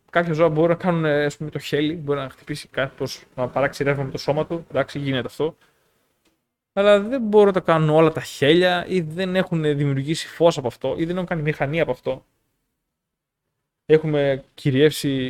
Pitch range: 125-155 Hz